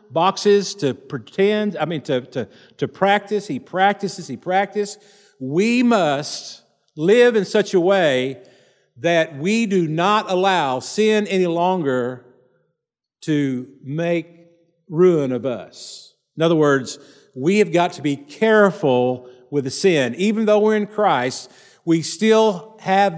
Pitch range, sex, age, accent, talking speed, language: 150-210 Hz, male, 50-69, American, 135 wpm, English